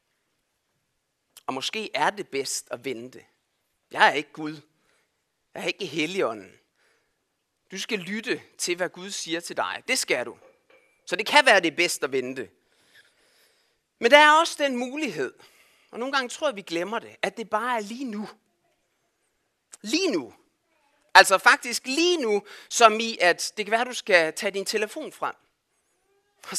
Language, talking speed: Danish, 165 wpm